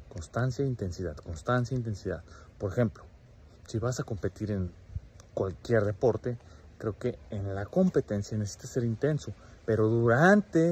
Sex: male